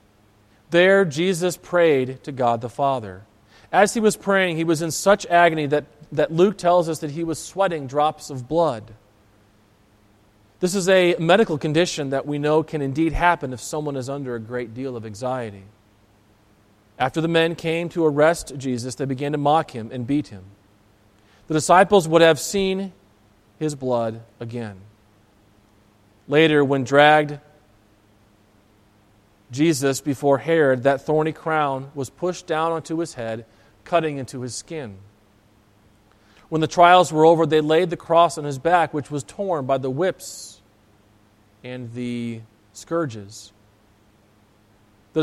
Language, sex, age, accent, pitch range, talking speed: English, male, 40-59, American, 105-165 Hz, 150 wpm